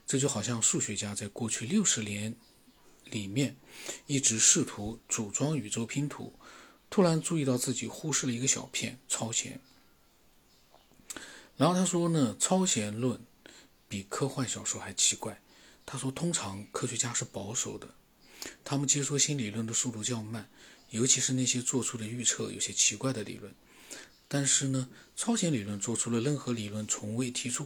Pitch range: 110-140 Hz